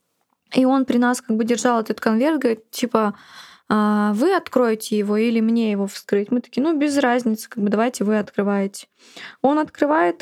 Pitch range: 215-255 Hz